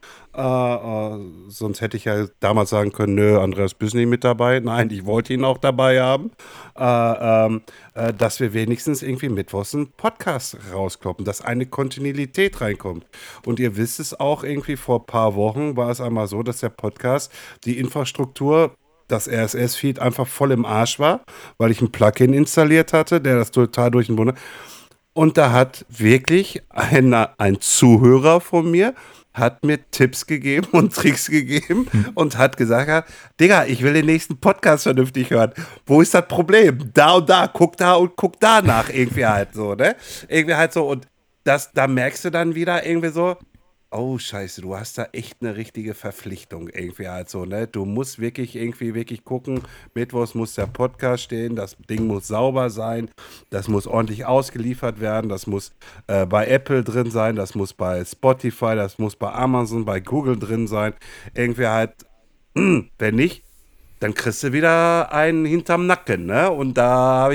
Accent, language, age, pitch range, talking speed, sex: German, German, 50-69, 110-145 Hz, 175 wpm, male